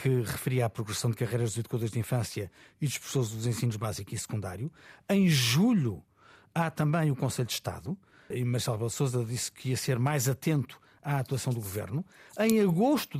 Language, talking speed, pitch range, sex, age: Portuguese, 185 wpm, 125-170 Hz, male, 50-69